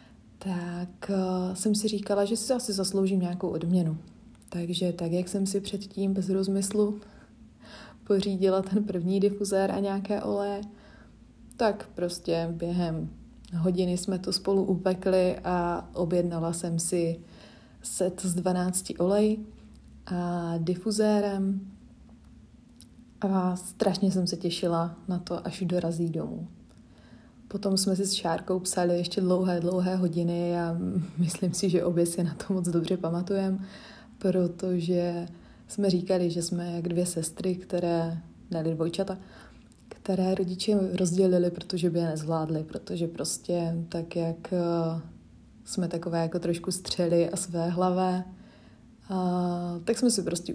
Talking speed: 130 wpm